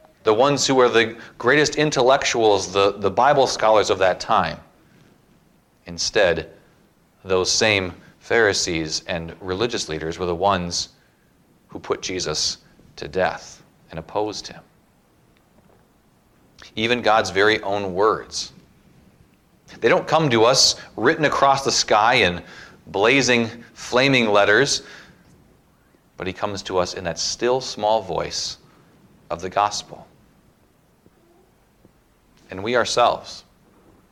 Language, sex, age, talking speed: English, male, 40-59, 115 wpm